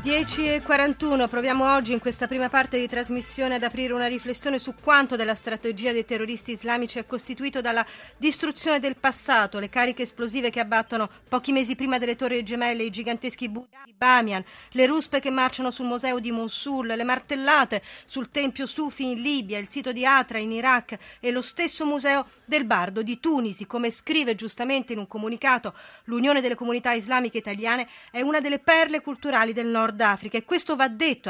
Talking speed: 180 wpm